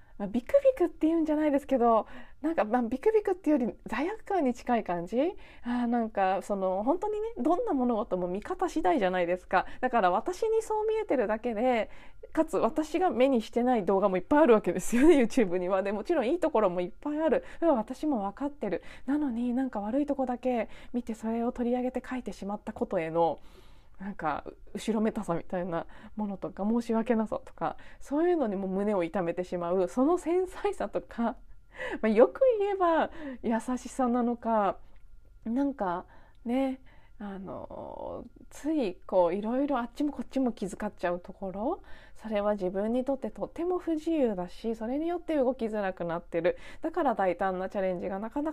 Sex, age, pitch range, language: female, 20-39, 195-285 Hz, Japanese